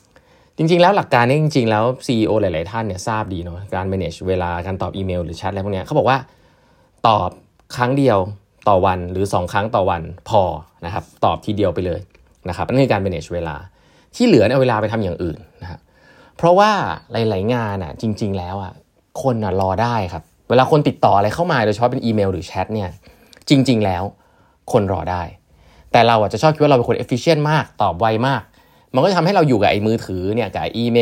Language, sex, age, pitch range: Thai, male, 20-39, 95-125 Hz